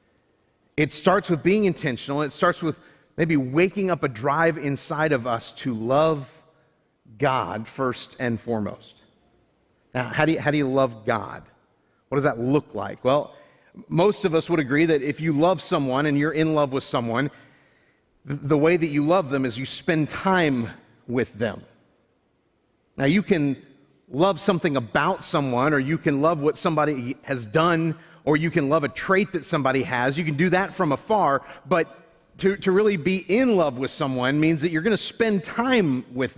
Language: English